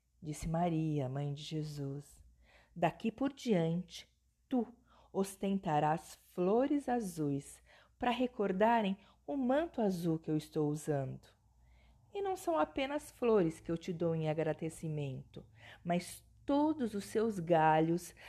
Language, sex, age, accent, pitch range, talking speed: Portuguese, female, 40-59, Brazilian, 145-205 Hz, 120 wpm